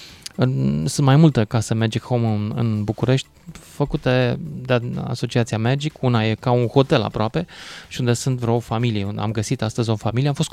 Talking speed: 170 wpm